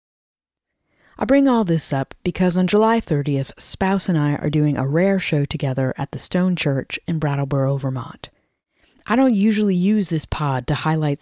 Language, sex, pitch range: English, female, 140-190 Hz